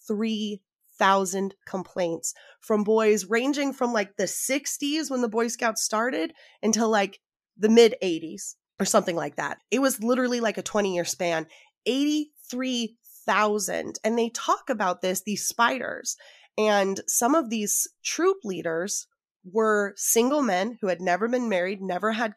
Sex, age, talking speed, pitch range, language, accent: female, 20-39, 150 wpm, 190-235 Hz, English, American